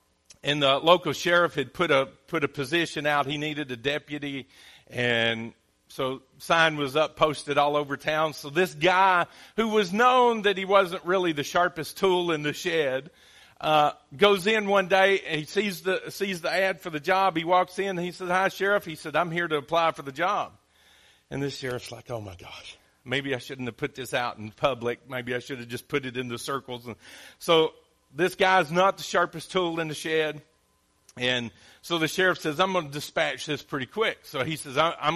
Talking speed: 215 wpm